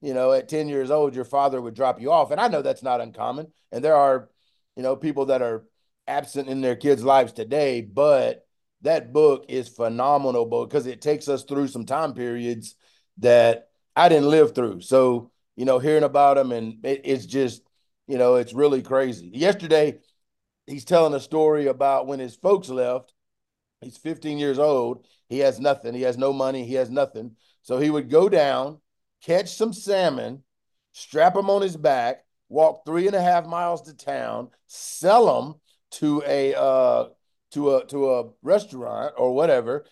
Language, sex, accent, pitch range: English, male, American, 130-165 Hz